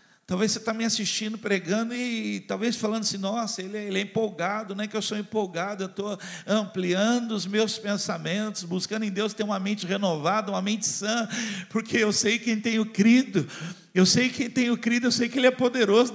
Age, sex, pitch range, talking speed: 50-69, male, 200-240 Hz, 210 wpm